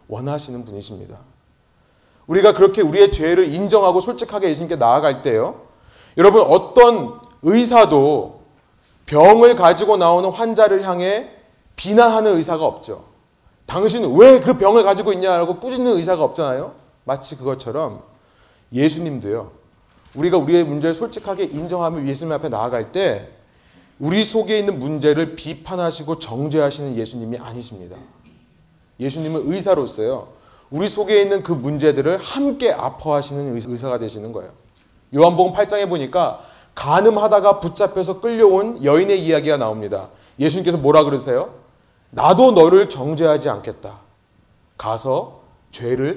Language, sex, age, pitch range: Korean, male, 30-49, 140-210 Hz